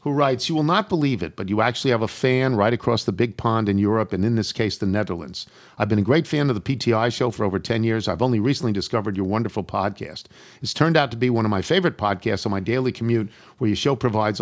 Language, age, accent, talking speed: English, 50-69, American, 265 wpm